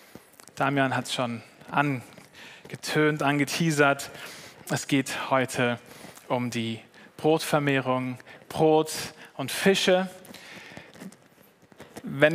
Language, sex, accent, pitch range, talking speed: German, male, German, 135-170 Hz, 80 wpm